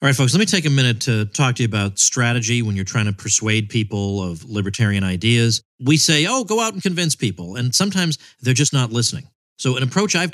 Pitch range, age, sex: 110-135 Hz, 40-59, male